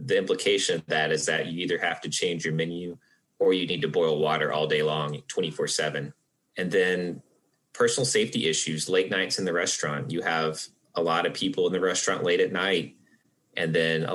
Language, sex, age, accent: English, male, 30-49, American